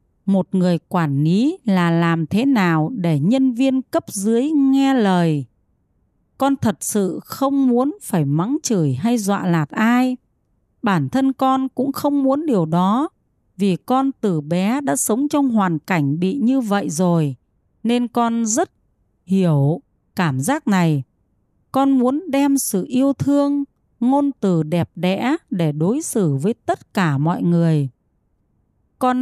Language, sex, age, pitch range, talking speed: Vietnamese, female, 30-49, 170-265 Hz, 150 wpm